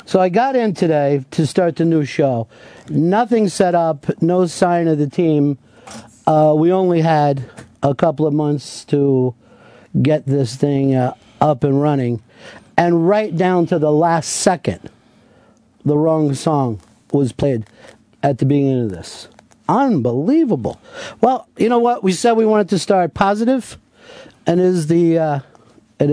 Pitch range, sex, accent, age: 130-180 Hz, male, American, 50-69